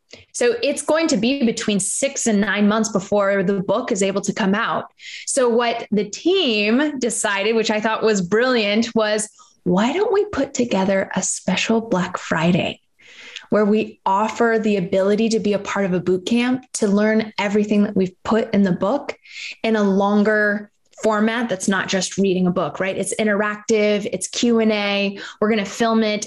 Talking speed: 185 wpm